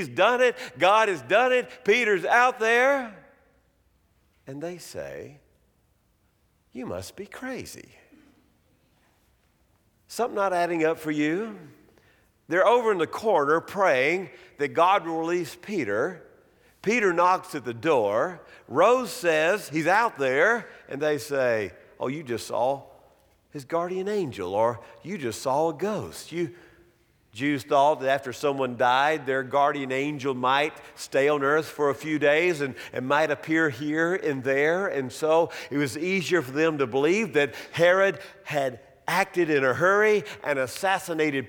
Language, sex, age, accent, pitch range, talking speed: English, male, 50-69, American, 135-195 Hz, 150 wpm